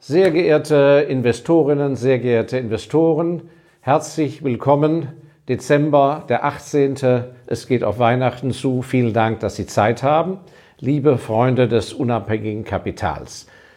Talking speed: 120 wpm